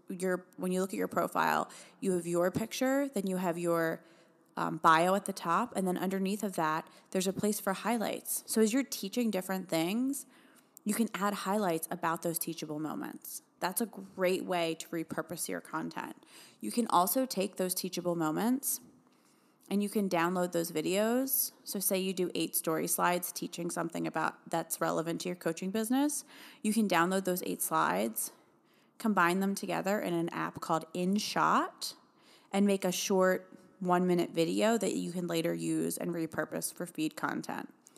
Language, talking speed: English, 175 wpm